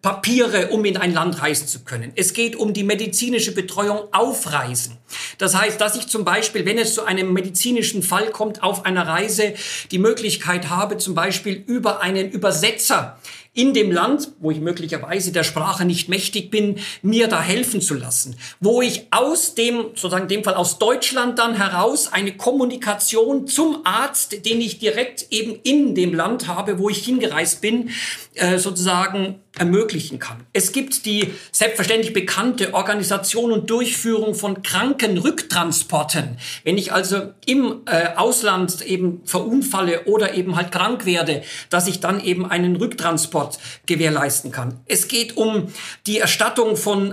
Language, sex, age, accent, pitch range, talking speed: German, male, 50-69, German, 180-225 Hz, 155 wpm